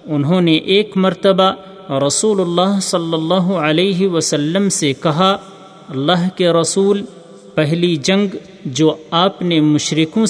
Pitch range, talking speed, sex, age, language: 155-195 Hz, 120 wpm, male, 40-59, Urdu